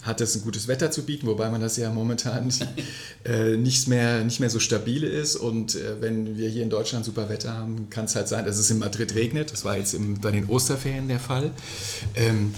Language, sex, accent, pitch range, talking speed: German, male, German, 105-120 Hz, 225 wpm